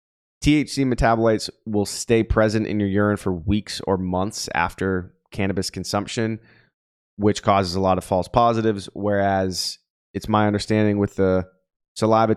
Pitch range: 95-115 Hz